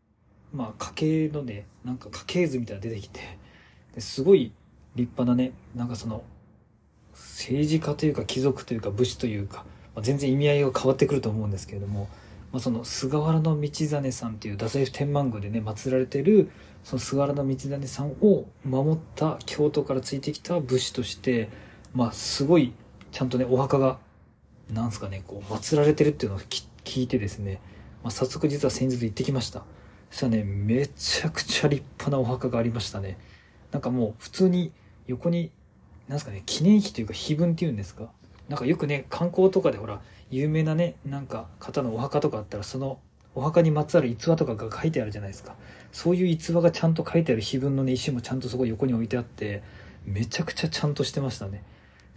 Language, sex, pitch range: Japanese, male, 105-145 Hz